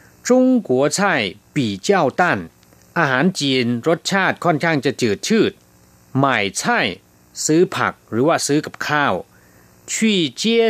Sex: male